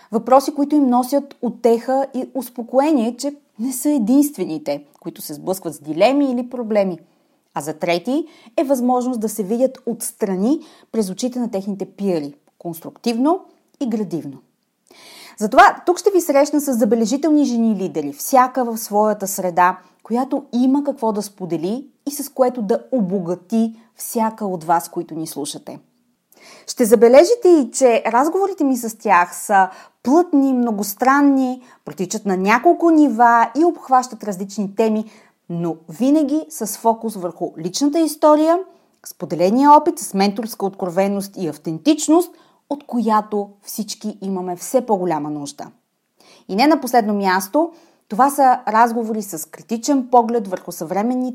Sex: female